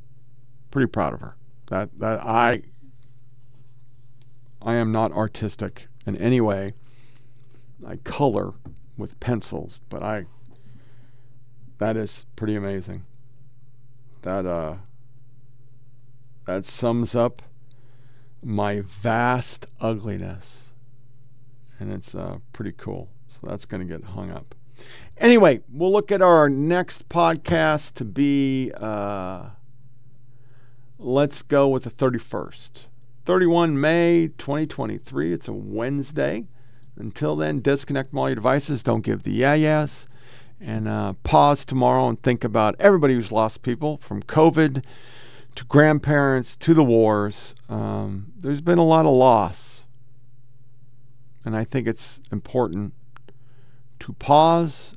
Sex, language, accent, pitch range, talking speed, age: male, English, American, 115-130 Hz, 120 wpm, 40-59